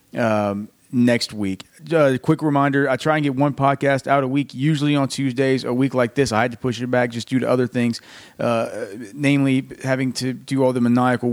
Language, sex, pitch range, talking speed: English, male, 120-140 Hz, 215 wpm